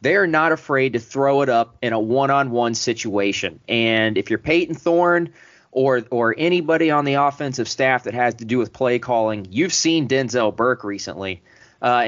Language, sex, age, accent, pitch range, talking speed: English, male, 30-49, American, 110-140 Hz, 180 wpm